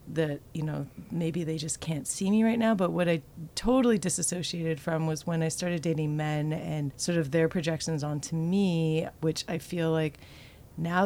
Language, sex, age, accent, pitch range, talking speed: English, female, 30-49, American, 145-165 Hz, 190 wpm